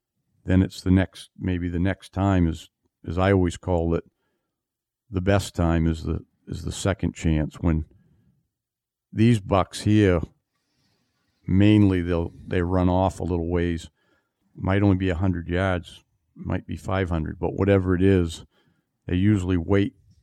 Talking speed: 150 wpm